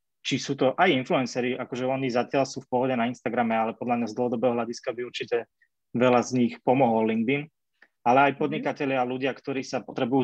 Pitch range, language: 120-135 Hz, Slovak